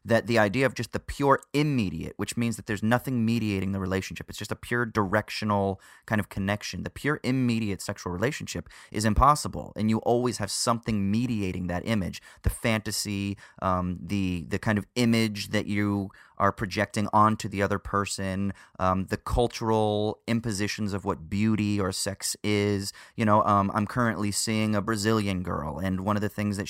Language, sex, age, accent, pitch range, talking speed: English, male, 30-49, American, 100-120 Hz, 180 wpm